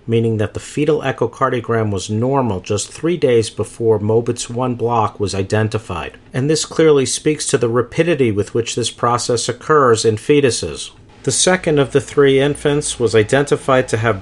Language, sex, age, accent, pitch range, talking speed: English, male, 50-69, American, 110-130 Hz, 170 wpm